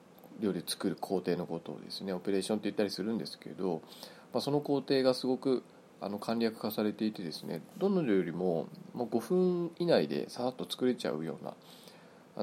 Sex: male